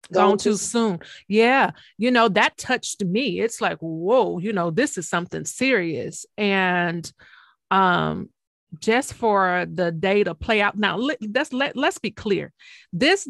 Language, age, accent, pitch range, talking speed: English, 30-49, American, 190-225 Hz, 155 wpm